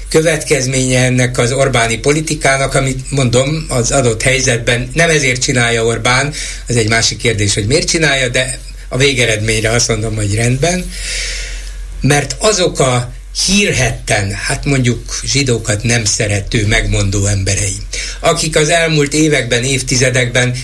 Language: Hungarian